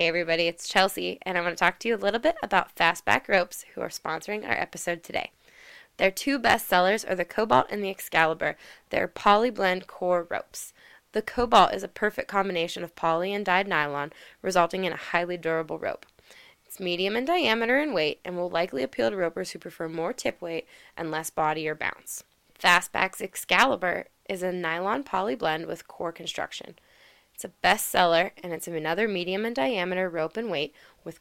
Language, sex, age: English, female, 20-39